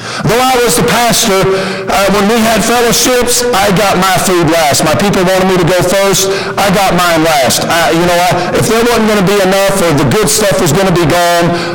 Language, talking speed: English, 235 wpm